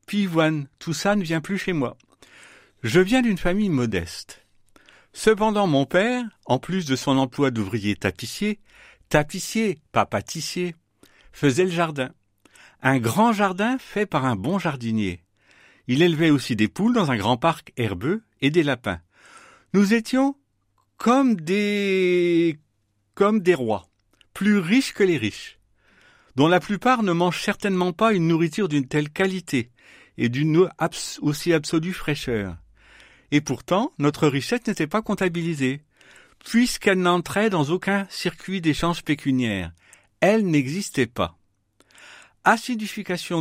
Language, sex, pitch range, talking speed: French, male, 140-200 Hz, 135 wpm